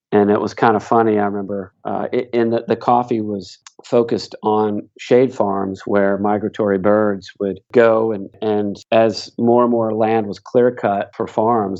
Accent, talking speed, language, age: American, 180 wpm, English, 40-59